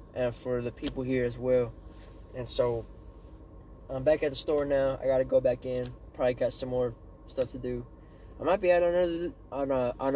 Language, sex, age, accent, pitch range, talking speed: English, male, 20-39, American, 110-135 Hz, 200 wpm